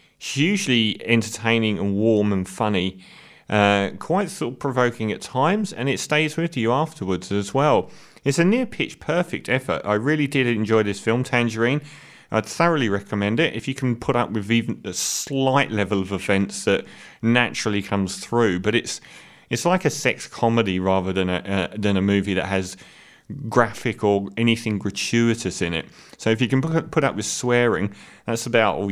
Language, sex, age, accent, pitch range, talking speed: English, male, 30-49, British, 100-130 Hz, 175 wpm